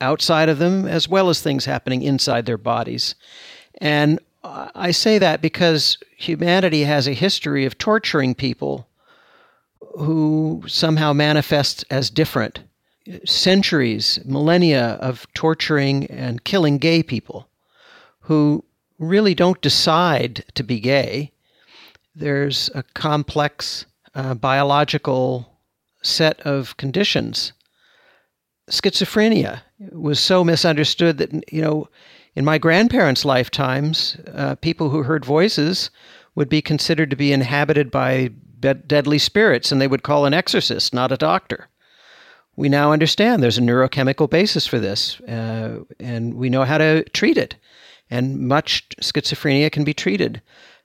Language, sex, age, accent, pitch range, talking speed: English, male, 50-69, American, 135-165 Hz, 125 wpm